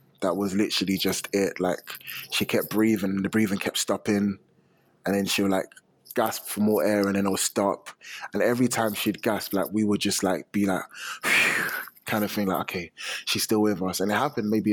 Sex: male